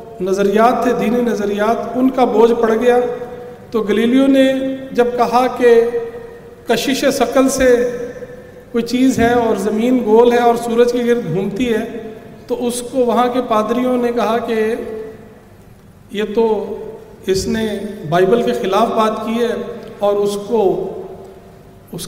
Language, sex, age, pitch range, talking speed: Urdu, male, 40-59, 205-245 Hz, 145 wpm